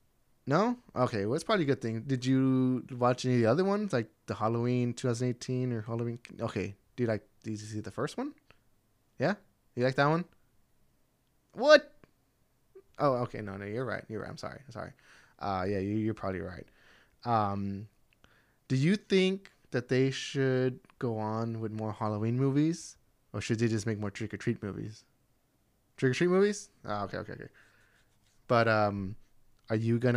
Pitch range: 110-130 Hz